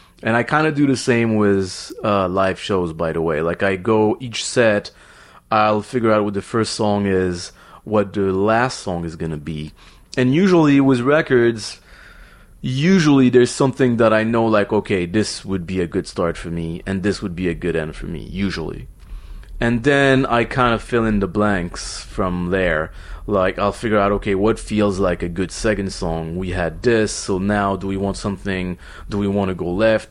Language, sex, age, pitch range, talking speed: English, male, 30-49, 95-115 Hz, 205 wpm